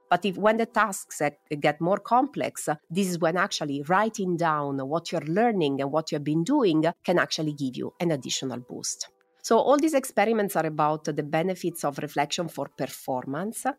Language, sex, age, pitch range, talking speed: Italian, female, 30-49, 150-220 Hz, 180 wpm